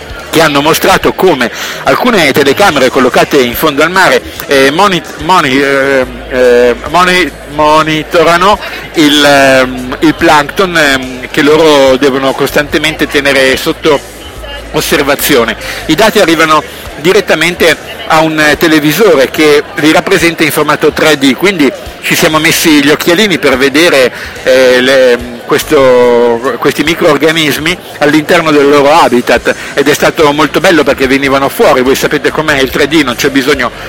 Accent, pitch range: native, 135-165 Hz